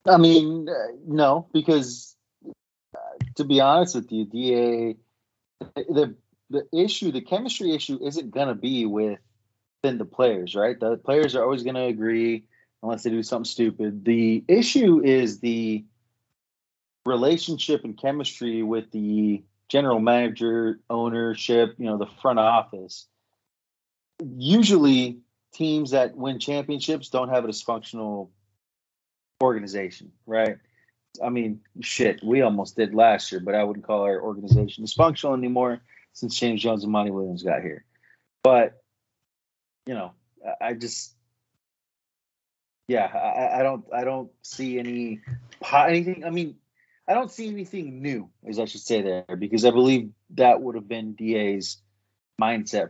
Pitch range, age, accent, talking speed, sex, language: 105-135 Hz, 30-49, American, 145 wpm, male, English